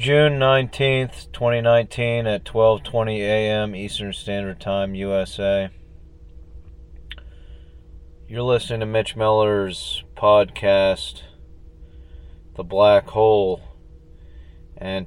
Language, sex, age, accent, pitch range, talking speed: English, male, 30-49, American, 80-110 Hz, 80 wpm